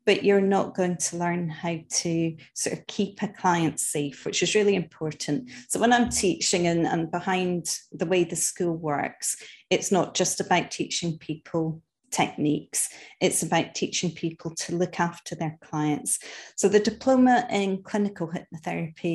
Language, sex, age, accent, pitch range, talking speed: English, female, 30-49, British, 165-195 Hz, 165 wpm